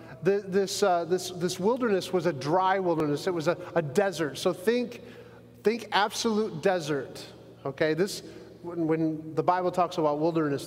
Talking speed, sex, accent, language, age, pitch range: 150 wpm, male, American, English, 30-49, 155-215 Hz